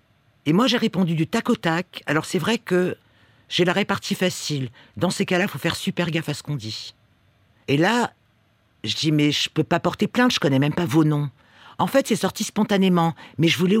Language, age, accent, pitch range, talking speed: French, 50-69, French, 120-190 Hz, 235 wpm